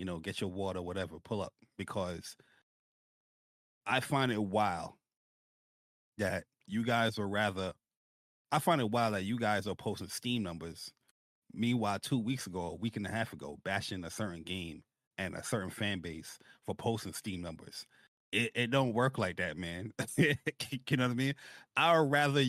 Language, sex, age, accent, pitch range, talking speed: English, male, 30-49, American, 100-135 Hz, 175 wpm